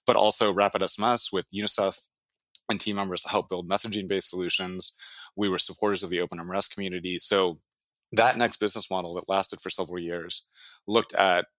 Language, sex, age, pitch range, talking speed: English, male, 20-39, 90-100 Hz, 170 wpm